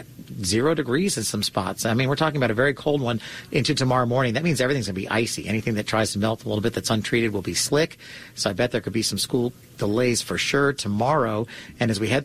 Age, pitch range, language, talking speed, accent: 40-59, 115-155 Hz, English, 260 wpm, American